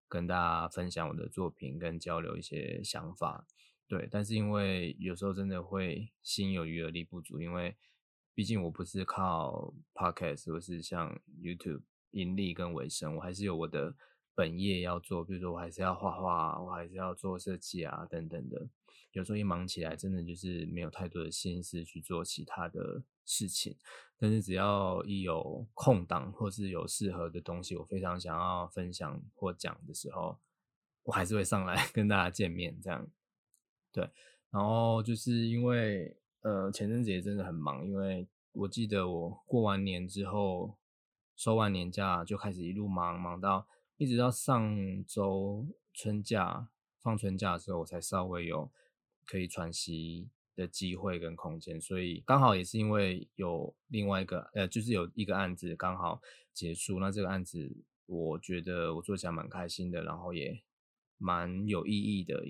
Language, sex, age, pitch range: Chinese, male, 20-39, 85-100 Hz